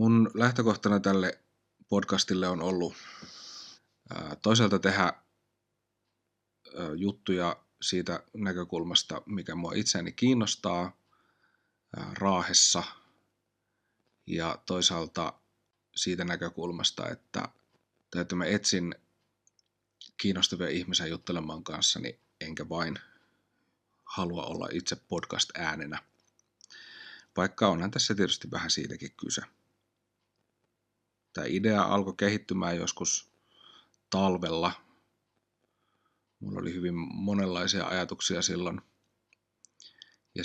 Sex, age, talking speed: male, 30-49, 80 wpm